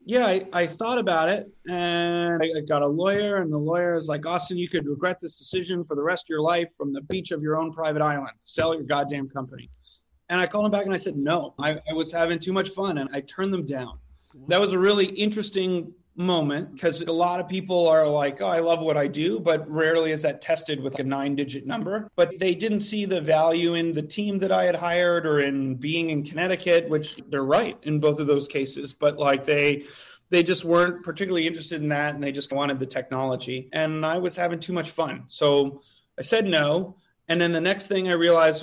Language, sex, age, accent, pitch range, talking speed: English, male, 30-49, American, 145-175 Hz, 235 wpm